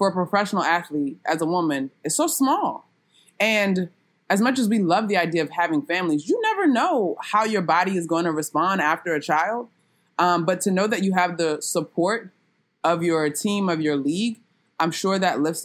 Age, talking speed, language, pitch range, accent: 20-39, 205 wpm, English, 160-200 Hz, American